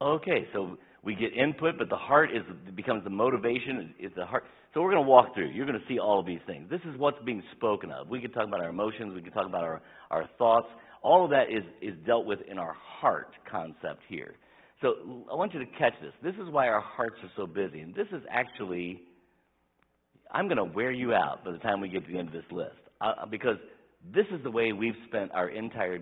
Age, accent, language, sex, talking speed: 50-69, American, English, male, 245 wpm